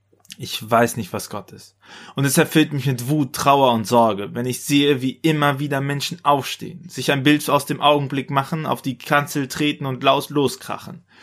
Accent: German